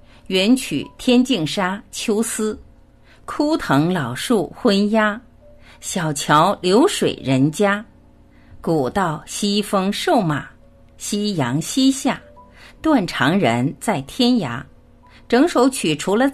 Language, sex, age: Chinese, female, 50-69